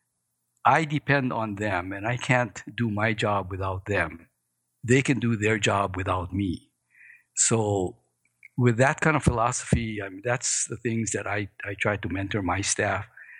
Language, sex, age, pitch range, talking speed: English, male, 60-79, 100-120 Hz, 170 wpm